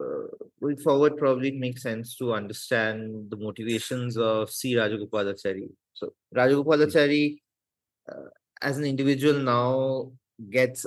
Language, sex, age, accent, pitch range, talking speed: Bengali, male, 30-49, native, 115-135 Hz, 120 wpm